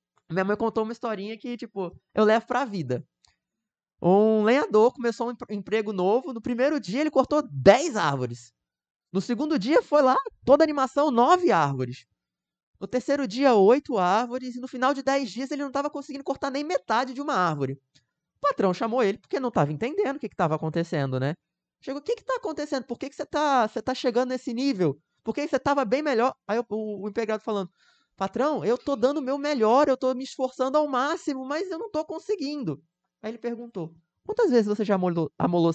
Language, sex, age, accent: Portuguese, male, 20-39, Brazilian